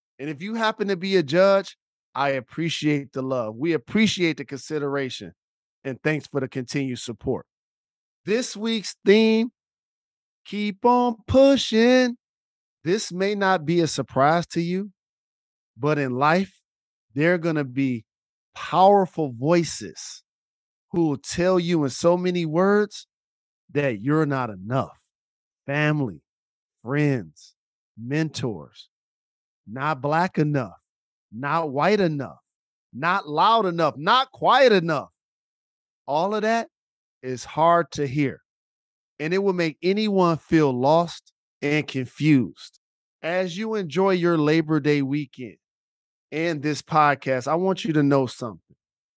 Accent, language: American, English